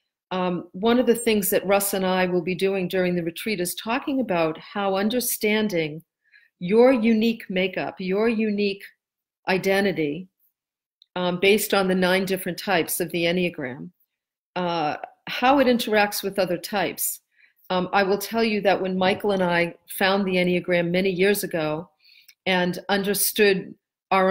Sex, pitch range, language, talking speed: female, 175-205 Hz, English, 155 wpm